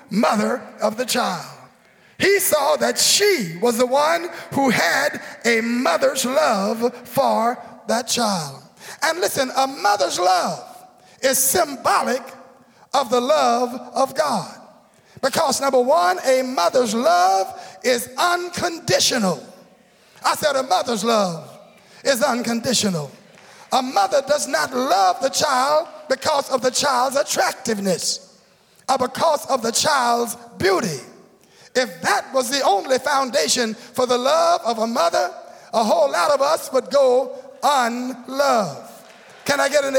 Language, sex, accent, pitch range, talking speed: English, male, American, 235-285 Hz, 130 wpm